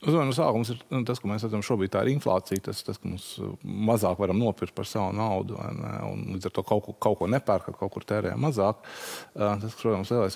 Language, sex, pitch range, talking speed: English, male, 95-120 Hz, 210 wpm